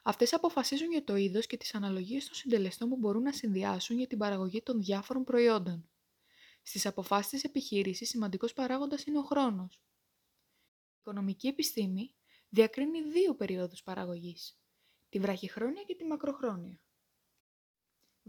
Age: 20-39